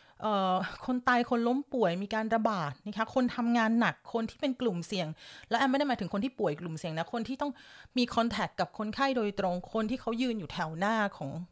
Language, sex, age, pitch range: Thai, female, 30-49, 195-255 Hz